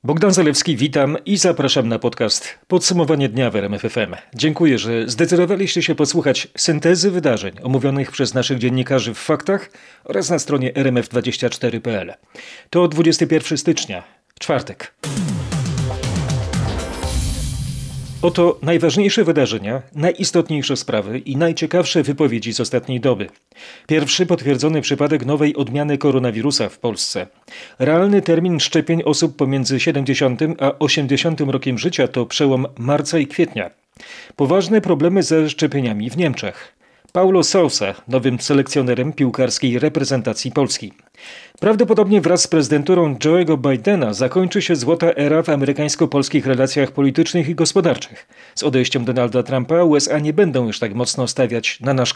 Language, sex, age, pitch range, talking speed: Polish, male, 40-59, 130-165 Hz, 125 wpm